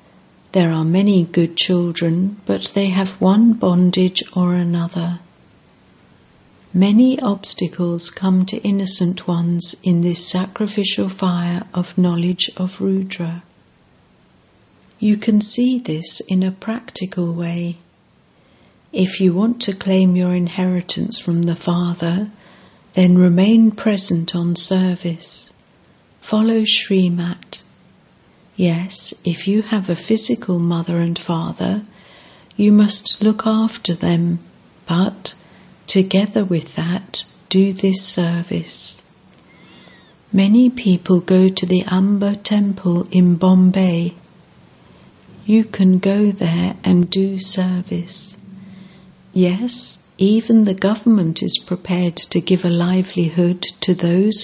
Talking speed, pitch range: 110 wpm, 175-200 Hz